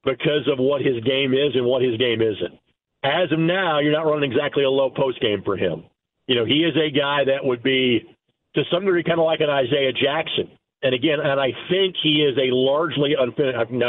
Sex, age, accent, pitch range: male, 50-69, American, 135-170 Hz